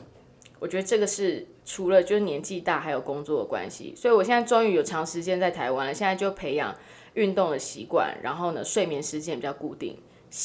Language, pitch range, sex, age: Chinese, 170-240 Hz, female, 20-39